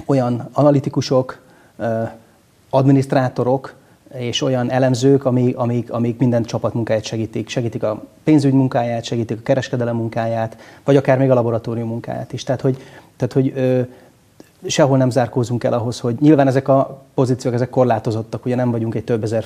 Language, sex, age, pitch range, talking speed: Hungarian, male, 30-49, 120-135 Hz, 145 wpm